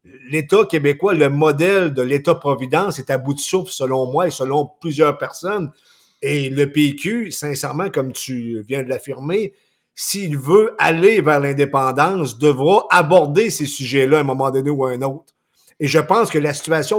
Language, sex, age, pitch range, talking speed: French, male, 50-69, 140-185 Hz, 175 wpm